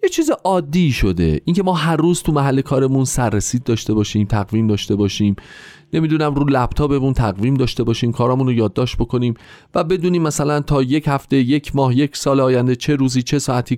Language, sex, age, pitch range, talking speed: Persian, male, 40-59, 115-175 Hz, 180 wpm